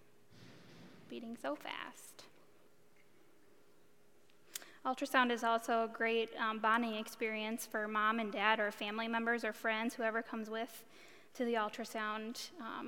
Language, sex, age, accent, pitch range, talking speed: English, female, 10-29, American, 225-250 Hz, 125 wpm